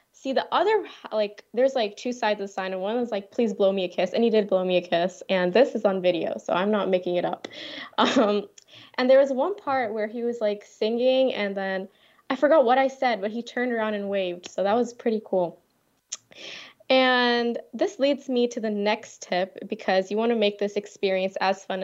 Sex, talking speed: female, 230 wpm